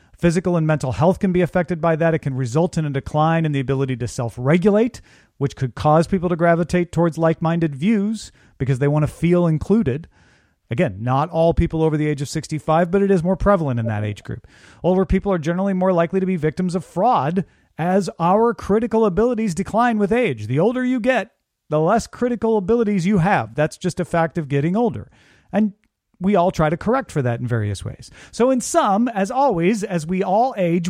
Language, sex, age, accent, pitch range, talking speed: English, male, 40-59, American, 145-200 Hz, 210 wpm